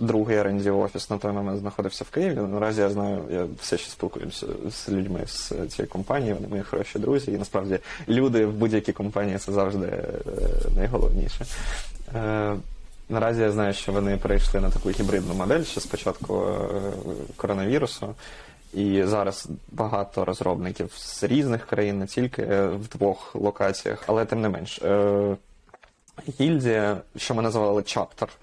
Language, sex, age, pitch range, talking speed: Ukrainian, male, 20-39, 100-110 Hz, 145 wpm